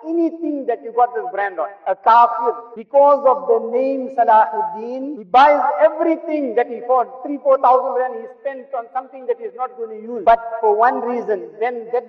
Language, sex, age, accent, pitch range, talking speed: English, male, 50-69, Indian, 230-285 Hz, 200 wpm